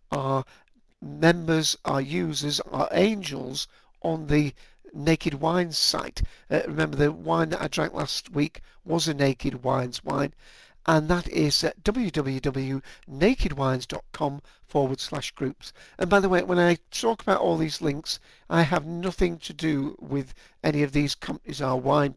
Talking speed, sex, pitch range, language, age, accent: 150 wpm, male, 140-175 Hz, English, 60-79, British